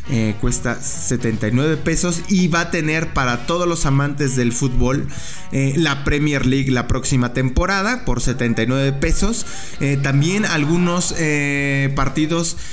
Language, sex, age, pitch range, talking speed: English, male, 20-39, 125-165 Hz, 135 wpm